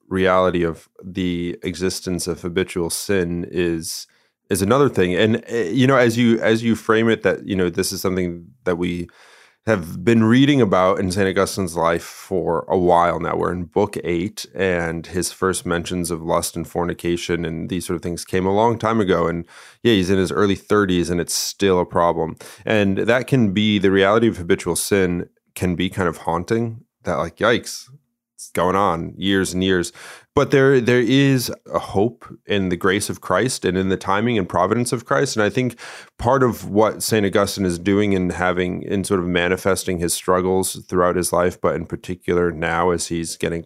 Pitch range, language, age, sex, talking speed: 85-105 Hz, English, 30-49, male, 195 wpm